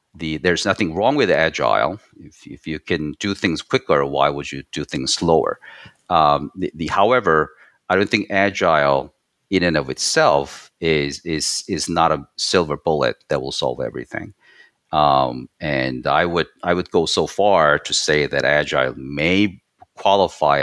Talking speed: 165 wpm